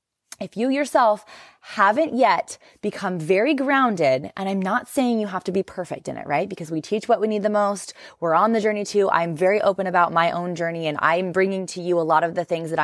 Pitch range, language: 170-230 Hz, English